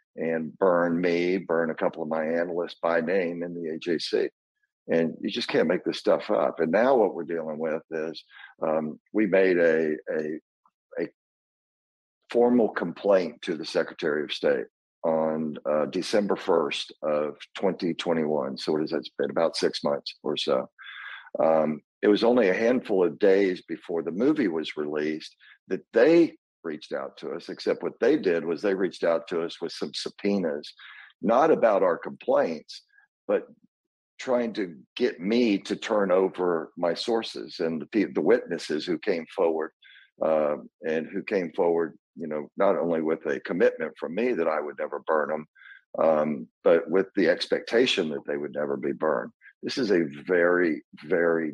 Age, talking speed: 50-69, 170 wpm